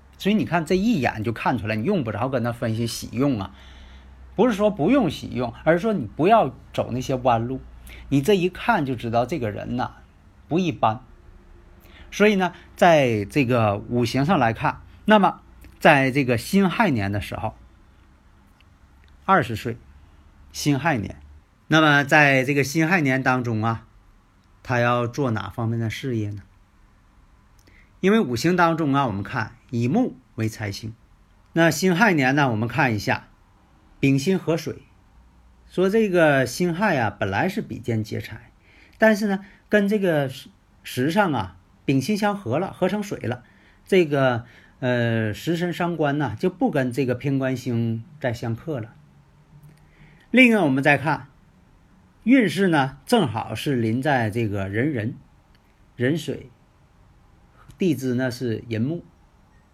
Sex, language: male, Chinese